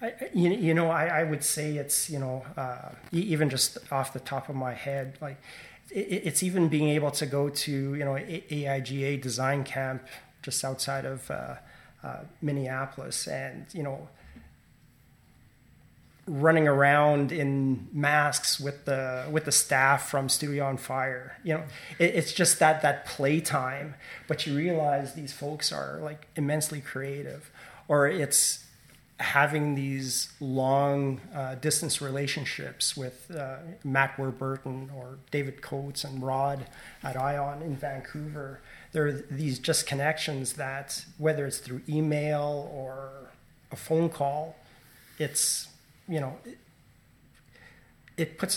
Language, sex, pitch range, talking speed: English, male, 135-150 Hz, 135 wpm